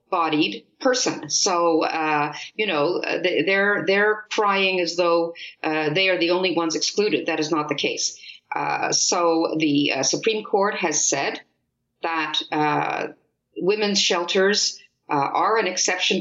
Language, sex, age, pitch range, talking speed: English, female, 50-69, 160-205 Hz, 145 wpm